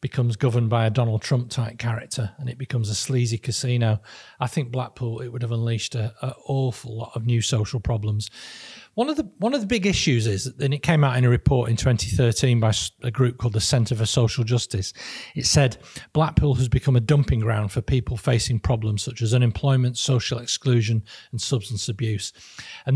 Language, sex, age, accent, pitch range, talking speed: English, male, 40-59, British, 115-140 Hz, 200 wpm